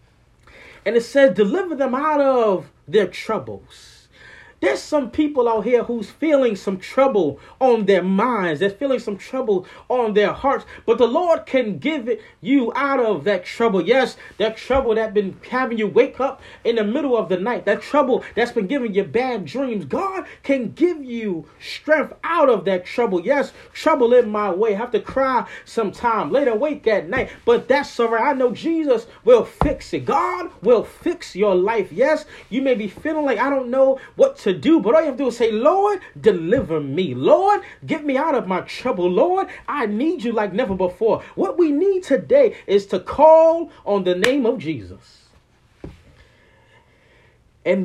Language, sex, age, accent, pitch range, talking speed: English, male, 30-49, American, 210-310 Hz, 190 wpm